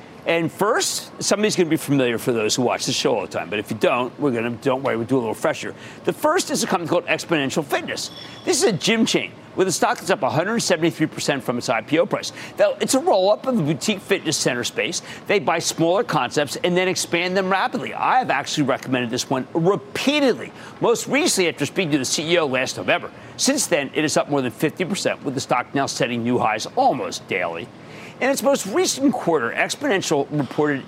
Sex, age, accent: male, 50-69, American